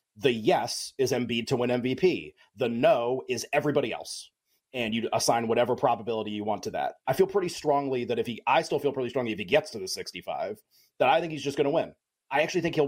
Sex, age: male, 30-49